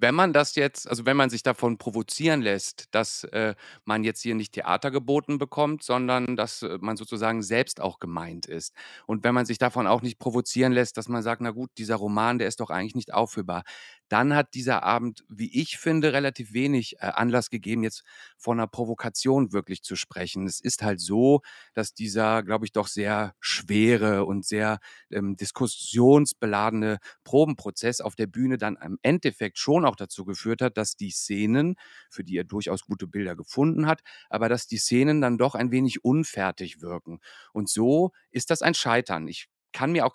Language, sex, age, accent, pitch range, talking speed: German, male, 40-59, German, 110-130 Hz, 190 wpm